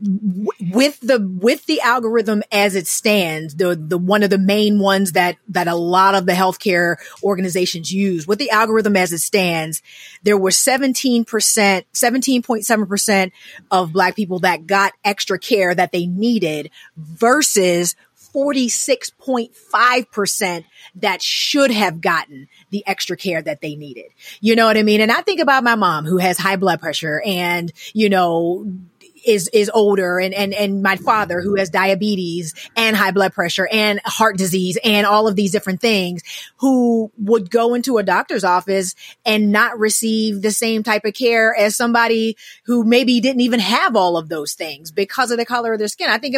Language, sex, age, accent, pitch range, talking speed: English, female, 30-49, American, 185-230 Hz, 175 wpm